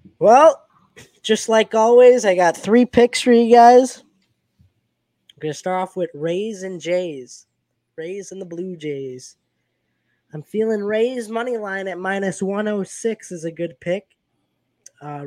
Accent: American